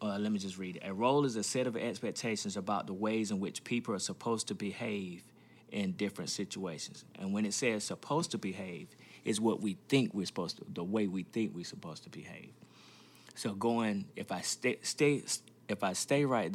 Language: English